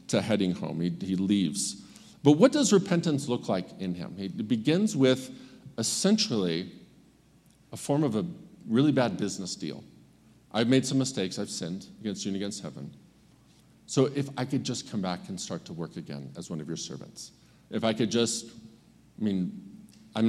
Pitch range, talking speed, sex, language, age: 100-130 Hz, 180 wpm, male, English, 40-59